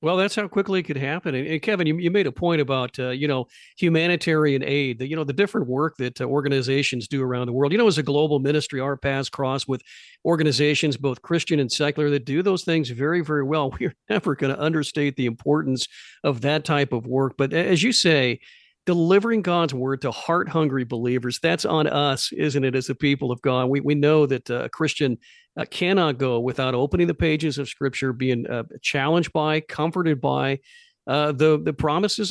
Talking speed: 205 wpm